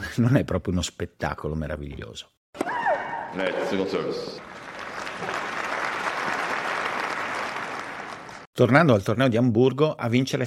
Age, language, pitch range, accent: 50-69, Italian, 90-120 Hz, native